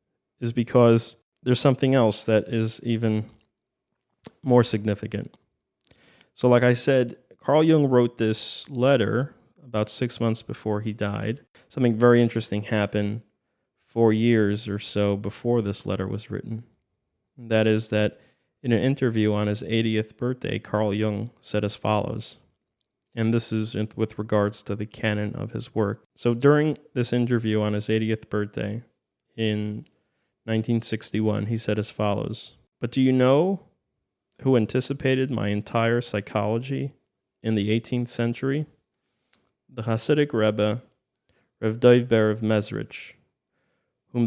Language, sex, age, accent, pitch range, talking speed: English, male, 30-49, American, 105-120 Hz, 135 wpm